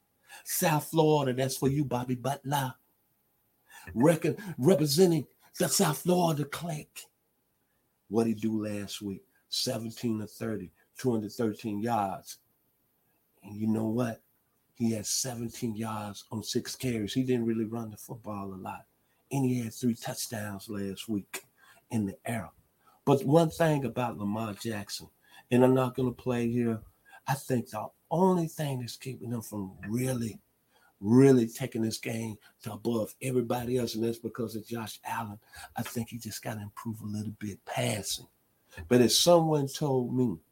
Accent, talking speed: American, 155 wpm